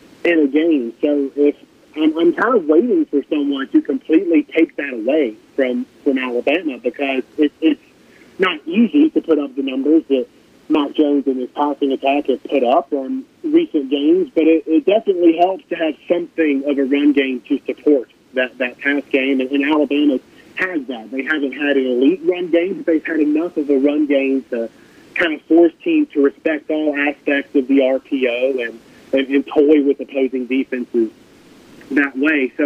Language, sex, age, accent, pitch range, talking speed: English, male, 30-49, American, 140-220 Hz, 185 wpm